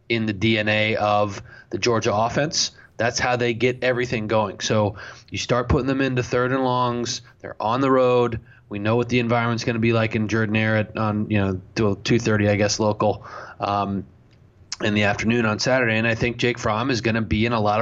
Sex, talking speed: male, 215 wpm